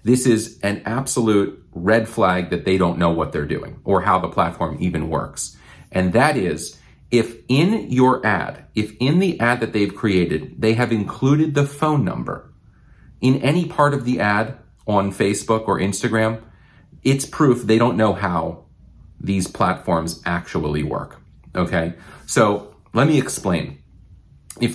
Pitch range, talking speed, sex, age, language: 95-125 Hz, 160 wpm, male, 40-59, English